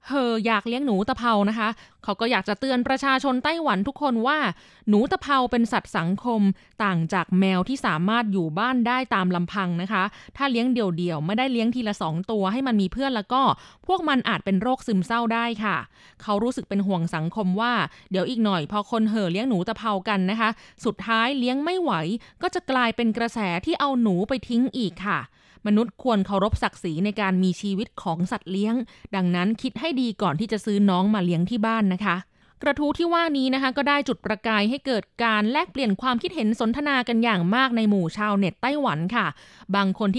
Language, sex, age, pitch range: Thai, female, 20-39, 195-250 Hz